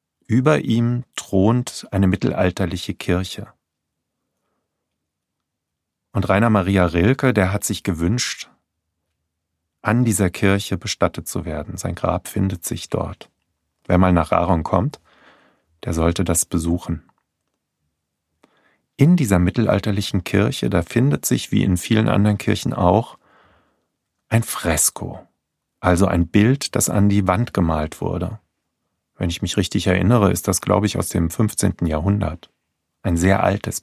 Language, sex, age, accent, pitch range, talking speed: German, male, 40-59, German, 85-105 Hz, 130 wpm